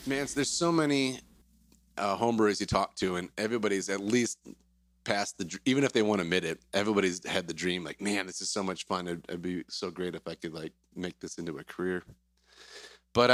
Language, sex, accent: English, male, American